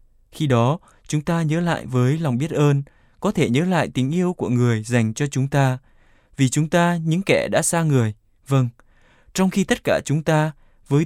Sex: male